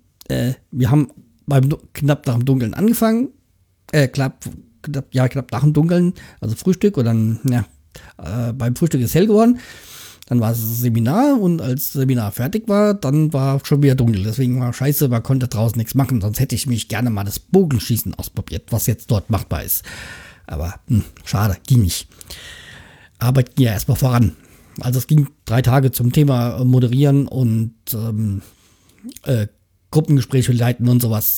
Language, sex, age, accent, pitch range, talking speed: German, male, 50-69, German, 105-140 Hz, 175 wpm